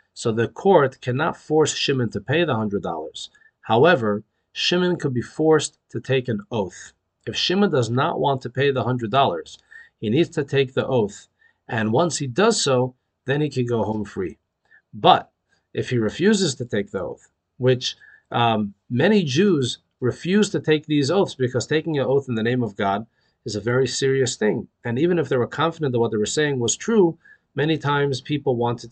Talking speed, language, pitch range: 195 wpm, English, 115-155 Hz